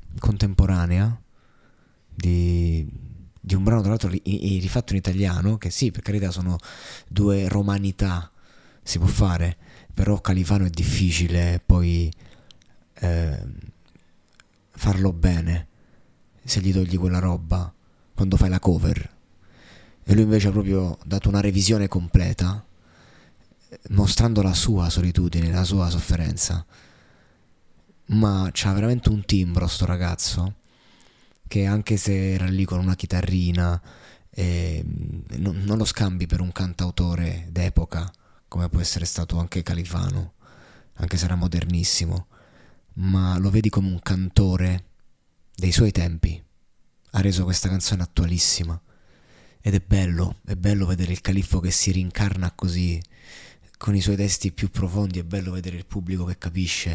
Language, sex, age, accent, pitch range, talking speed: Italian, male, 20-39, native, 85-100 Hz, 130 wpm